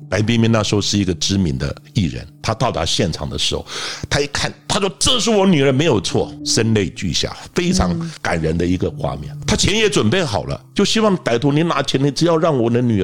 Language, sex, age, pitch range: Chinese, male, 50-69, 90-130 Hz